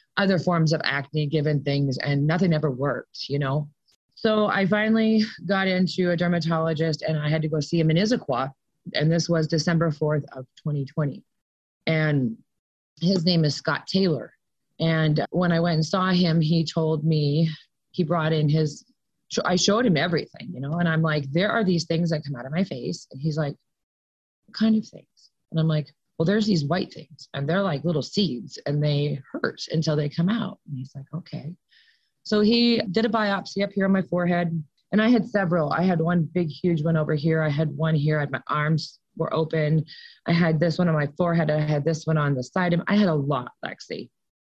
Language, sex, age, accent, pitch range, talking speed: English, female, 30-49, American, 155-185 Hz, 210 wpm